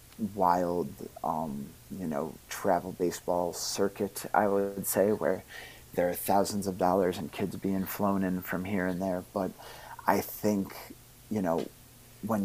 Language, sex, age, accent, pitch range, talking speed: English, male, 30-49, American, 90-110 Hz, 150 wpm